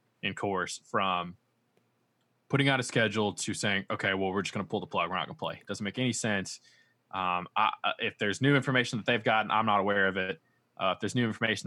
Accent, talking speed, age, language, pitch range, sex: American, 245 wpm, 20-39, English, 95-115 Hz, male